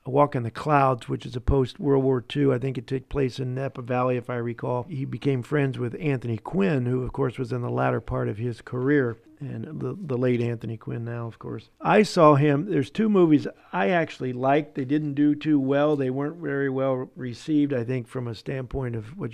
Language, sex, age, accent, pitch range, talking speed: English, male, 50-69, American, 125-150 Hz, 230 wpm